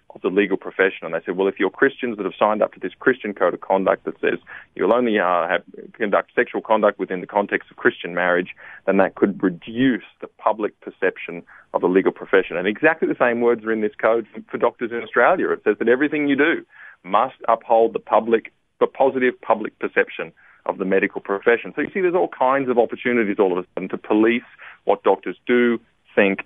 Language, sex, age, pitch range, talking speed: English, male, 30-49, 100-125 Hz, 220 wpm